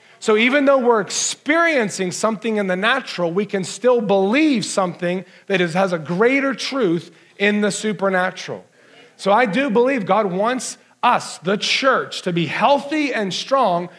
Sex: male